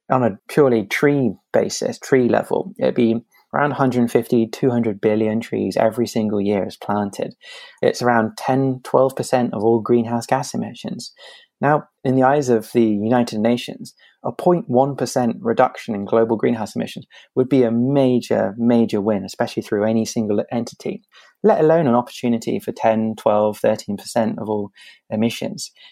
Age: 20-39